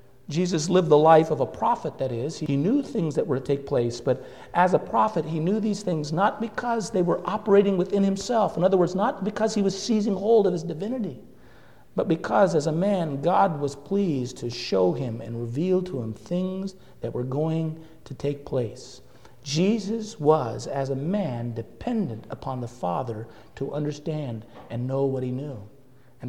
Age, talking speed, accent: 50-69, 190 wpm, American